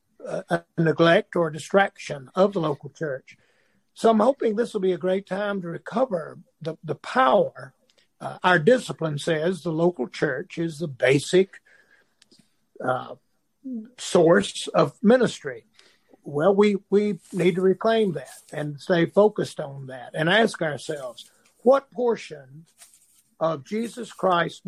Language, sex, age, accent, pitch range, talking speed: English, male, 60-79, American, 160-200 Hz, 140 wpm